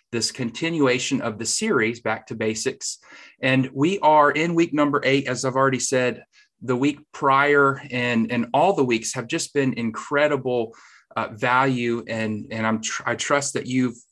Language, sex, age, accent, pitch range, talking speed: English, male, 30-49, American, 110-130 Hz, 165 wpm